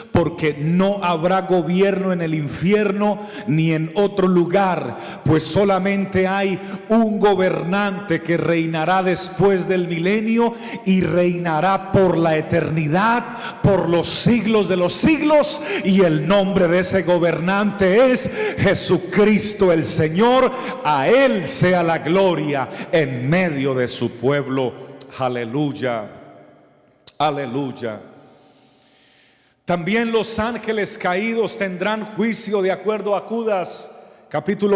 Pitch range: 175-205 Hz